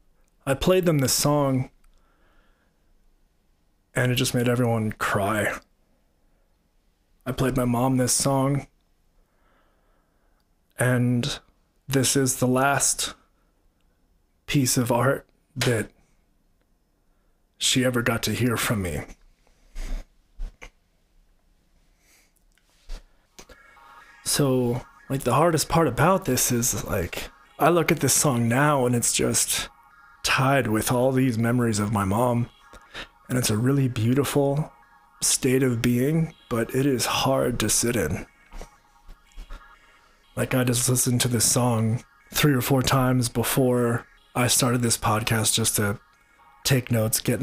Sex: male